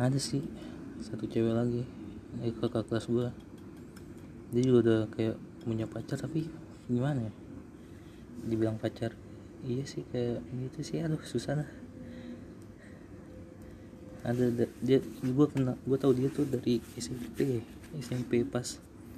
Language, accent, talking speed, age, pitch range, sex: Indonesian, native, 125 wpm, 20-39, 110-120 Hz, male